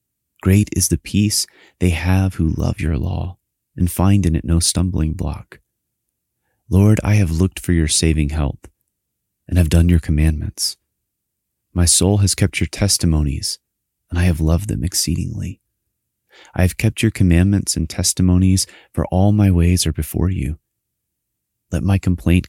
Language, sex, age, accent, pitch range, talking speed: English, male, 30-49, American, 80-95 Hz, 155 wpm